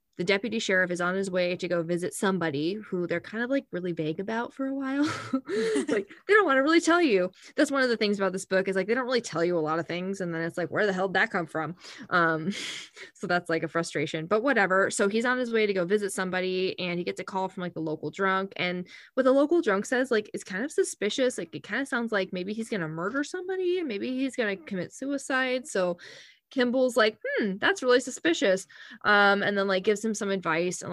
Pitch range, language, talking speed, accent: 175-225 Hz, English, 255 wpm, American